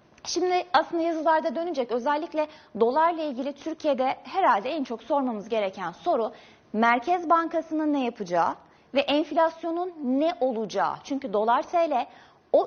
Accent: native